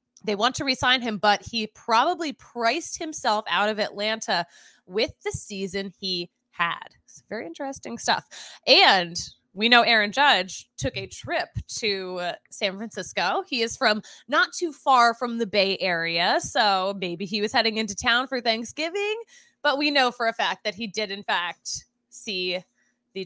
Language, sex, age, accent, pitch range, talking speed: English, female, 20-39, American, 195-260 Hz, 170 wpm